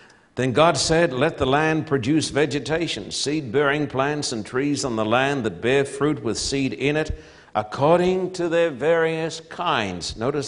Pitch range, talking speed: 125-160 Hz, 160 wpm